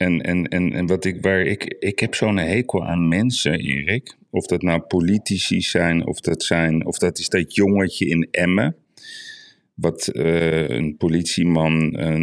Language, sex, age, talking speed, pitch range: Dutch, male, 40-59, 170 wpm, 80-95 Hz